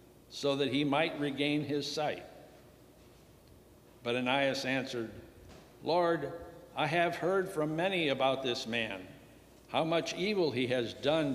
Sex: male